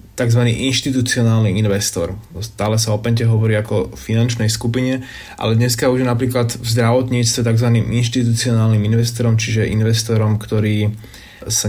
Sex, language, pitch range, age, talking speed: male, Slovak, 105-115 Hz, 20-39, 125 wpm